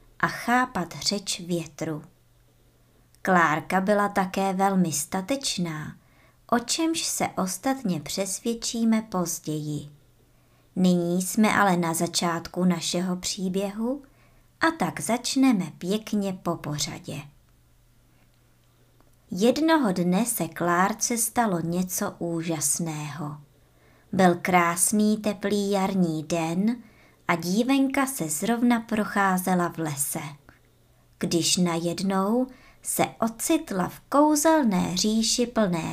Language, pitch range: Czech, 170-230 Hz